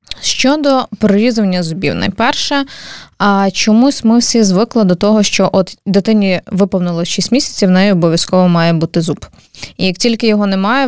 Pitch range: 180-225 Hz